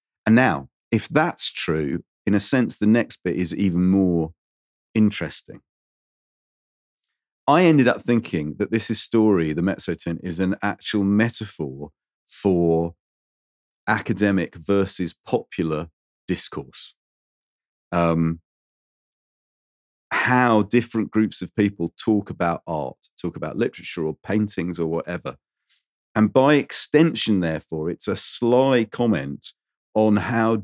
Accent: British